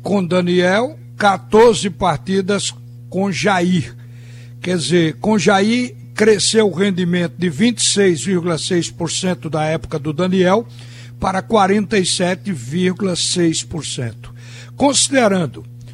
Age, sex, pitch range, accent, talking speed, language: 60-79, male, 150-200 Hz, Brazilian, 85 wpm, Portuguese